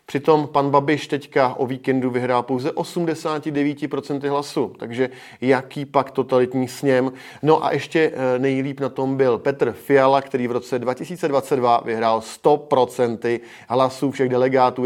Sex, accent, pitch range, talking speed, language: male, native, 110-135 Hz, 135 wpm, Czech